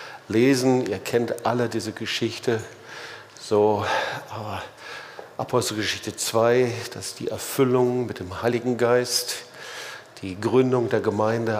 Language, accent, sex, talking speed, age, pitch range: German, German, male, 110 wpm, 50-69, 105-120 Hz